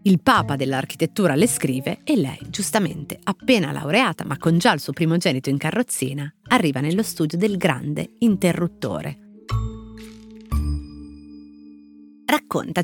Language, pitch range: Italian, 150-205 Hz